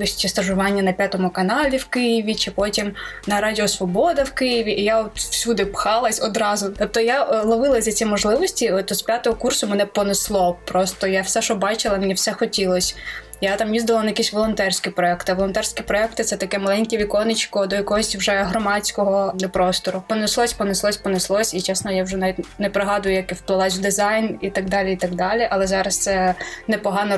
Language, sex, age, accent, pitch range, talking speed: Ukrainian, female, 20-39, native, 195-240 Hz, 185 wpm